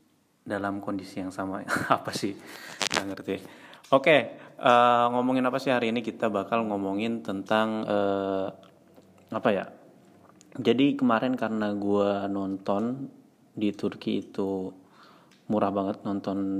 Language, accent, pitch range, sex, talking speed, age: Indonesian, native, 100-110 Hz, male, 125 wpm, 20-39